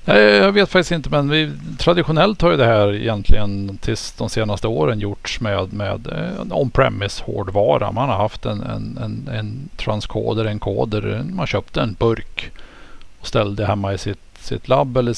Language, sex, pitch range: Swedish, male, 100-120 Hz